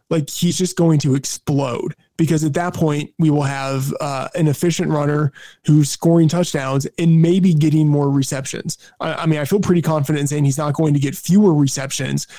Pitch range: 145-165 Hz